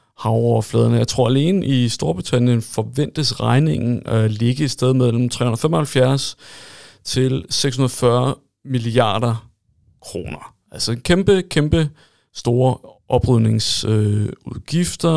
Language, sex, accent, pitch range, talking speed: Danish, male, native, 115-135 Hz, 95 wpm